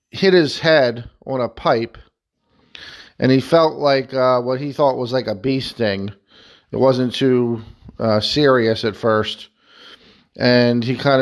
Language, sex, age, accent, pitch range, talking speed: English, male, 40-59, American, 115-135 Hz, 155 wpm